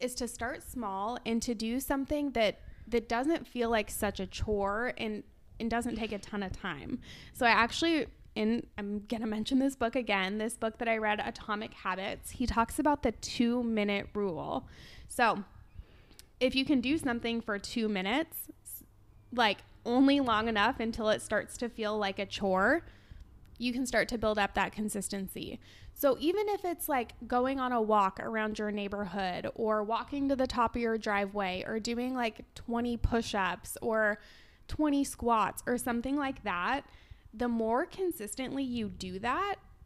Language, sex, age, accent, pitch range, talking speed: English, female, 20-39, American, 210-250 Hz, 175 wpm